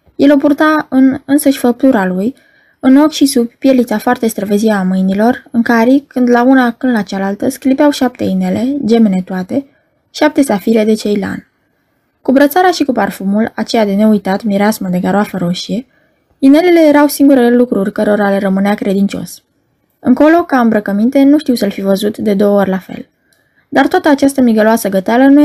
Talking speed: 170 wpm